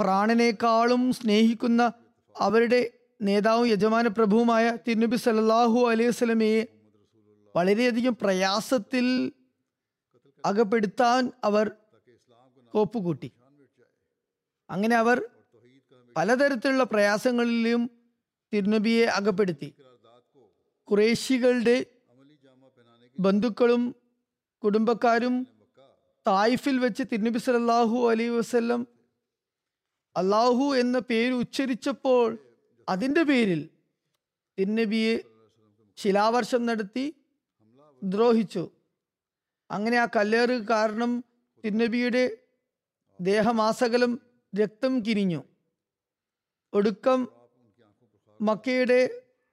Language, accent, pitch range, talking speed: Malayalam, native, 195-245 Hz, 60 wpm